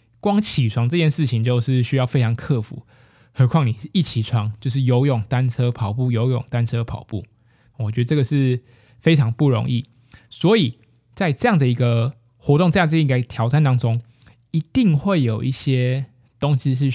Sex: male